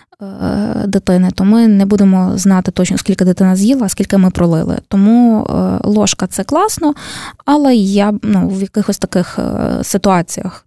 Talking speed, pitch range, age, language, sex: 145 wpm, 185-225 Hz, 20-39, Ukrainian, female